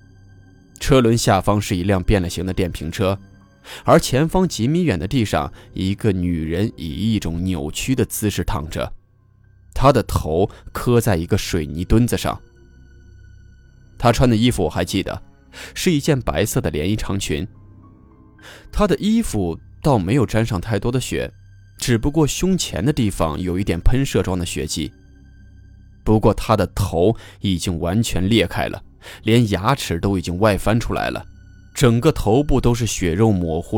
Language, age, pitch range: Chinese, 20-39, 90-115 Hz